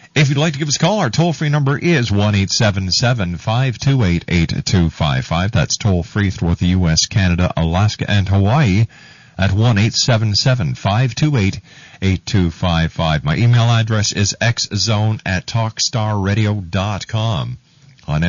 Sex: male